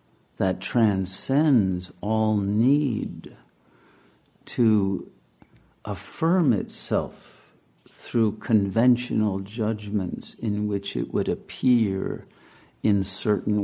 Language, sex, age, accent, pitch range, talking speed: English, male, 50-69, American, 95-110 Hz, 75 wpm